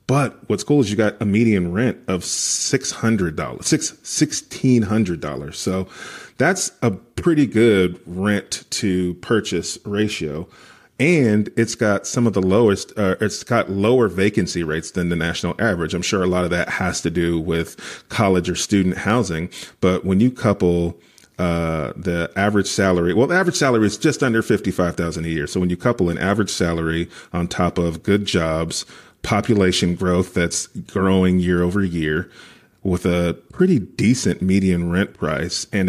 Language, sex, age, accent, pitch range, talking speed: English, male, 30-49, American, 85-105 Hz, 175 wpm